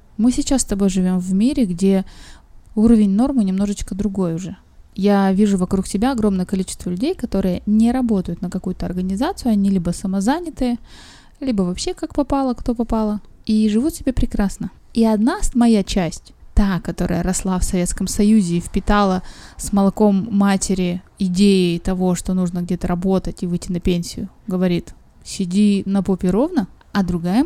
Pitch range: 185-220 Hz